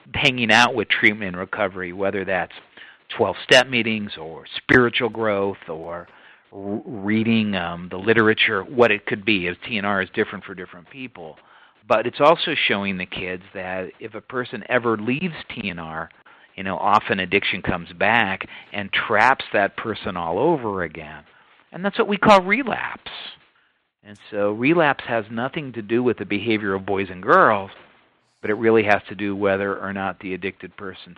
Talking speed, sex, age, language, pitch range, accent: 165 wpm, male, 50-69, English, 95-115 Hz, American